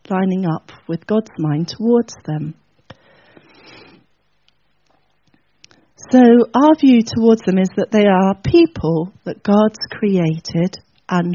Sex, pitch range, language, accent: female, 170-225 Hz, English, British